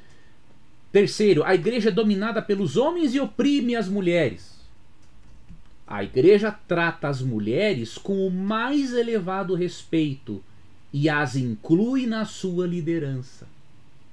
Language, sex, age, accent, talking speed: Portuguese, male, 40-59, Brazilian, 115 wpm